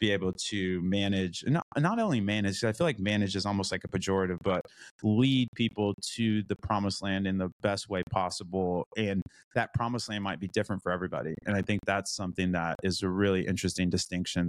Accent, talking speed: American, 205 wpm